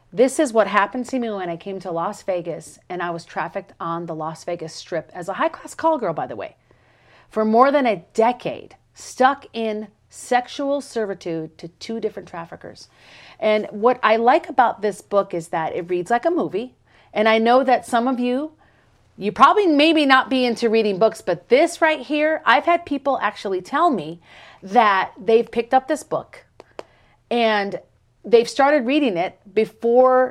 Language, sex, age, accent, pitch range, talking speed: English, female, 40-59, American, 195-265 Hz, 185 wpm